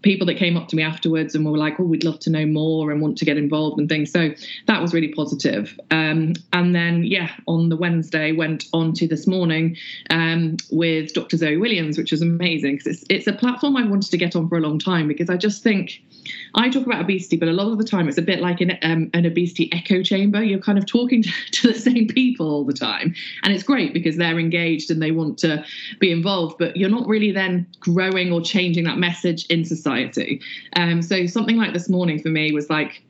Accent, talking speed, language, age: British, 240 wpm, English, 20-39